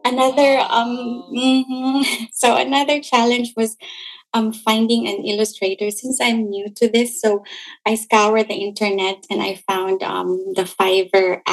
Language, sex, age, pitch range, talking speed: English, female, 20-39, 205-240 Hz, 140 wpm